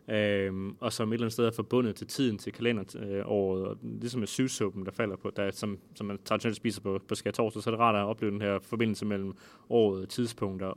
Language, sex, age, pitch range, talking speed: Danish, male, 20-39, 100-115 Hz, 230 wpm